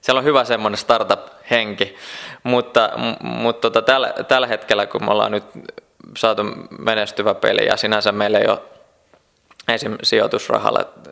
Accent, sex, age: native, male, 20-39